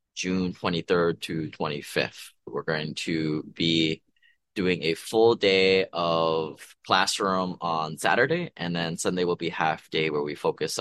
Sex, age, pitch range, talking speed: male, 20-39, 85-100 Hz, 145 wpm